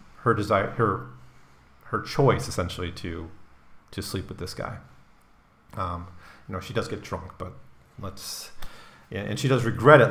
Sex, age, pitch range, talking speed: male, 40-59, 90-120 Hz, 160 wpm